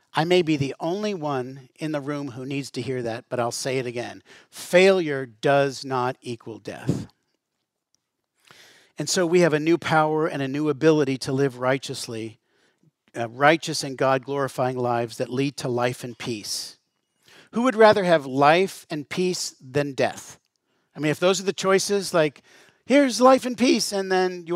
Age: 50-69